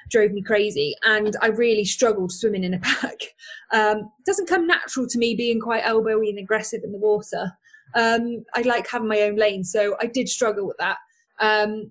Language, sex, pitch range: English, female, 195-250 Hz